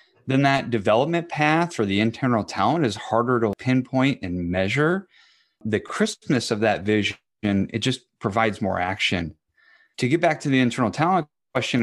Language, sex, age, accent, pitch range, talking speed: English, male, 30-49, American, 100-130 Hz, 160 wpm